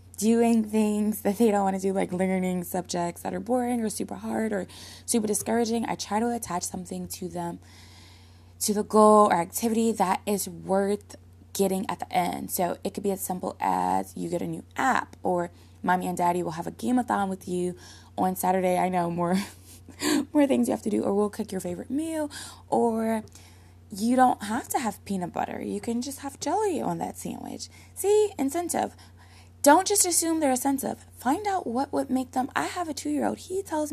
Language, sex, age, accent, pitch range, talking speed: English, female, 20-39, American, 170-255 Hz, 205 wpm